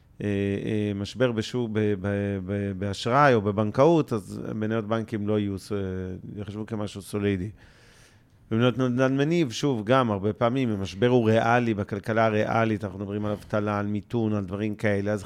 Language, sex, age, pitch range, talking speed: Hebrew, male, 40-59, 105-125 Hz, 140 wpm